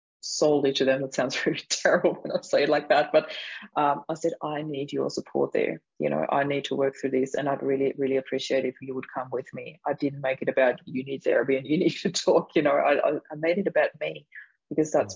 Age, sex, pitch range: 20-39, female, 140-165 Hz